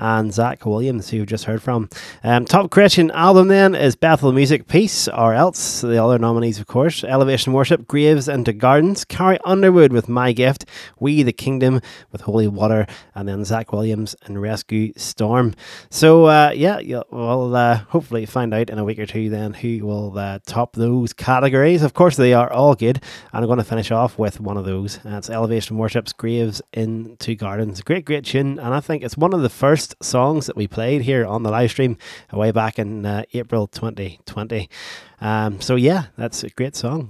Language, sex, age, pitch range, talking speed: English, male, 30-49, 110-135 Hz, 195 wpm